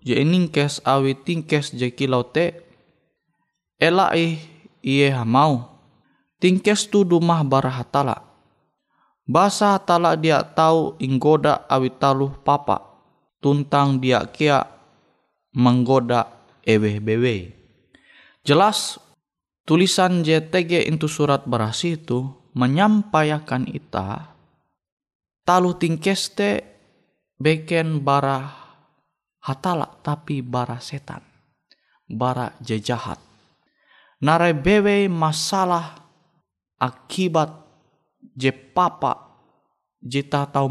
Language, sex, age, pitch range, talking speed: Indonesian, male, 20-39, 125-170 Hz, 80 wpm